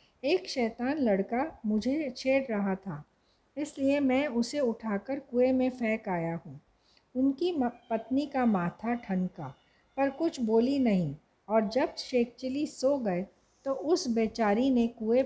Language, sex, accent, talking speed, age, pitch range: Hindi, female, native, 140 wpm, 50-69, 205-265 Hz